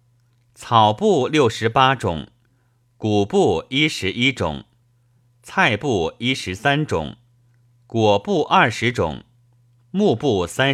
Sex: male